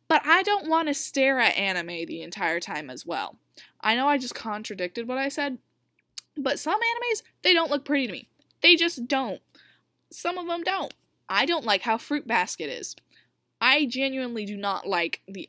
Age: 10-29